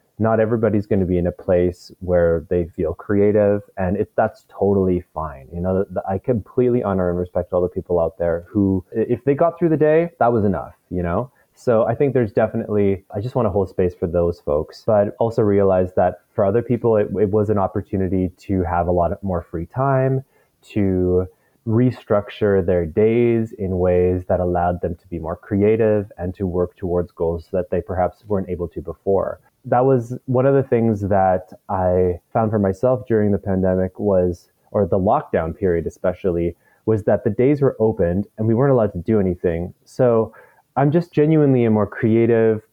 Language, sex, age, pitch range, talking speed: English, male, 20-39, 90-115 Hz, 195 wpm